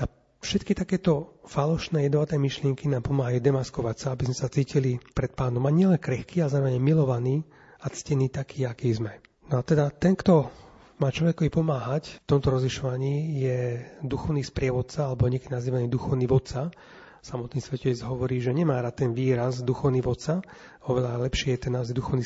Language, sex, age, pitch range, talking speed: Slovak, male, 30-49, 125-150 Hz, 165 wpm